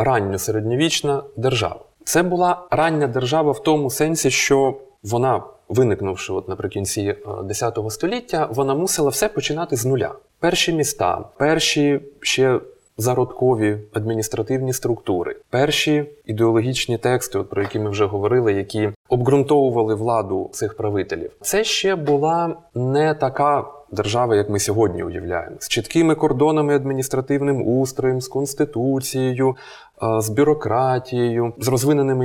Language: Ukrainian